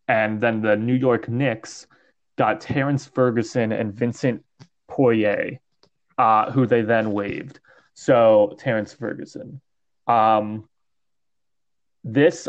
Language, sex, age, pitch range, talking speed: English, male, 20-39, 105-130 Hz, 105 wpm